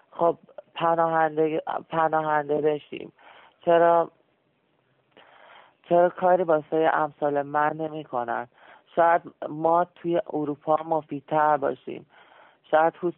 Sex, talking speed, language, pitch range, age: male, 75 wpm, English, 140-165 Hz, 40-59